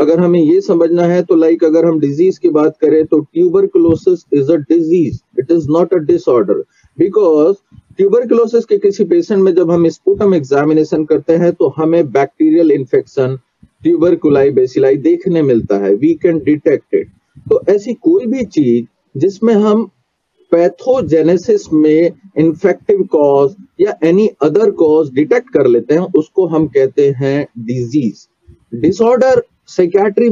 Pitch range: 155-230 Hz